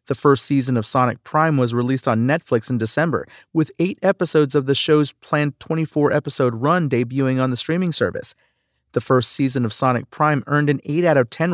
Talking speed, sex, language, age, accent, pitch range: 200 wpm, male, English, 40-59, American, 120-155 Hz